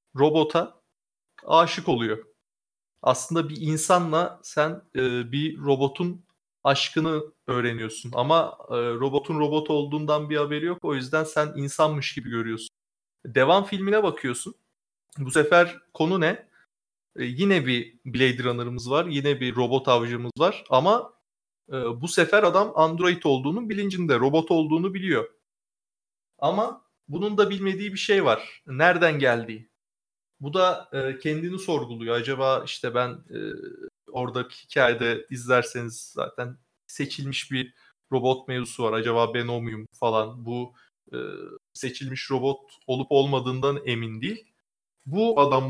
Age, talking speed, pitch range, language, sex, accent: 30-49, 125 wpm, 125-180 Hz, Turkish, male, native